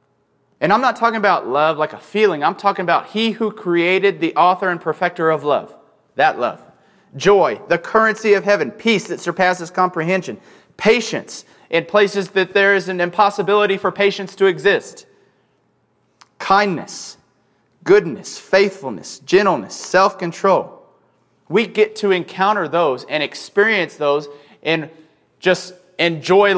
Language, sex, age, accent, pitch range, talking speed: English, male, 30-49, American, 160-205 Hz, 135 wpm